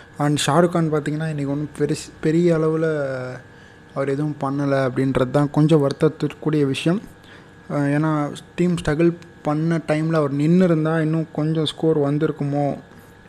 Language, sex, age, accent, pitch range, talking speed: Tamil, male, 20-39, native, 135-150 Hz, 120 wpm